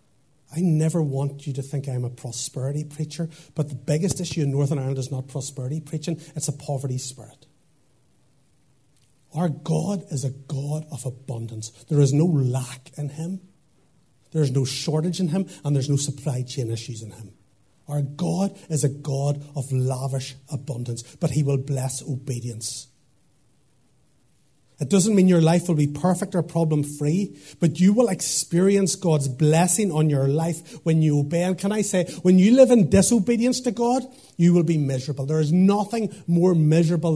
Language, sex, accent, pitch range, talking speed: English, male, Irish, 130-170 Hz, 175 wpm